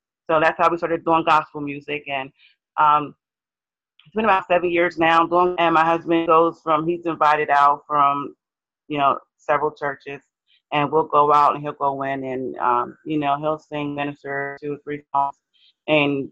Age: 30-49